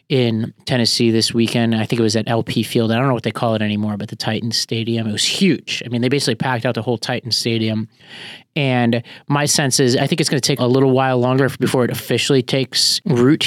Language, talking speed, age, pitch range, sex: English, 240 wpm, 30-49, 115-135 Hz, male